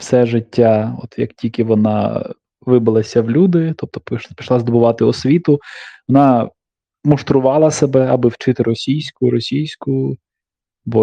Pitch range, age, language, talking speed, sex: 115-140 Hz, 20-39, Ukrainian, 115 wpm, male